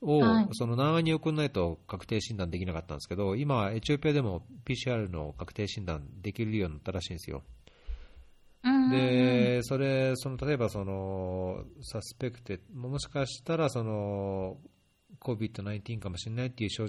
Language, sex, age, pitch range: Japanese, male, 40-59, 90-125 Hz